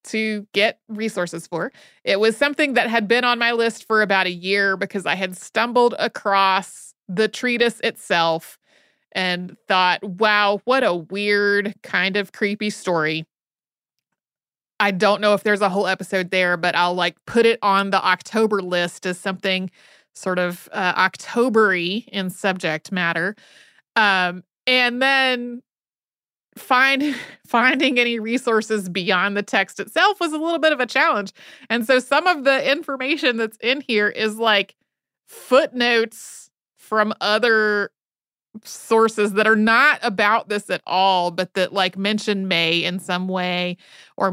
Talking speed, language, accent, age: 150 wpm, English, American, 30-49